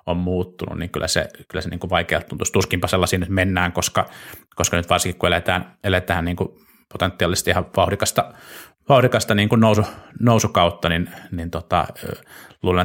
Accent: native